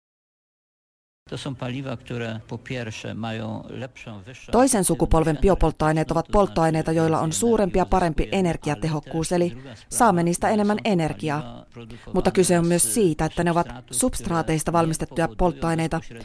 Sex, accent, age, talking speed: female, native, 30-49, 100 wpm